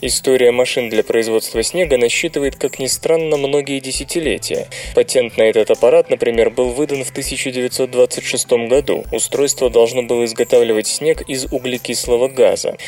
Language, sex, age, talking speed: Russian, male, 20-39, 135 wpm